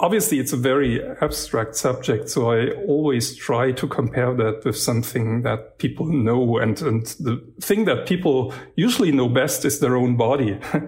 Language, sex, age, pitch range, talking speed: English, male, 50-69, 125-150 Hz, 170 wpm